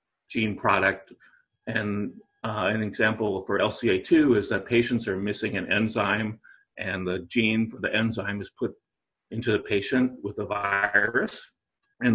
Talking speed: 150 wpm